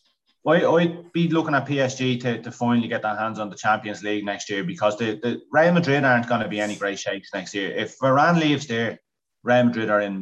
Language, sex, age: English, male, 30-49